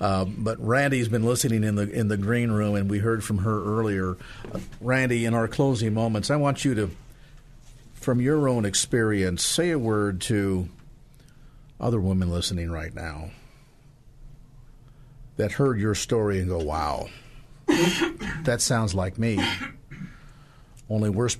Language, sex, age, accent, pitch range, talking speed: English, male, 50-69, American, 105-130 Hz, 145 wpm